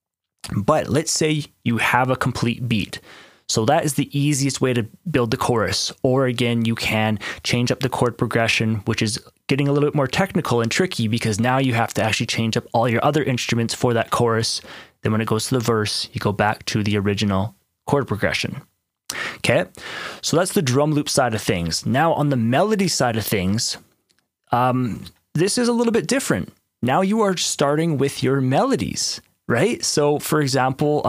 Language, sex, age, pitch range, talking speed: English, male, 20-39, 115-145 Hz, 195 wpm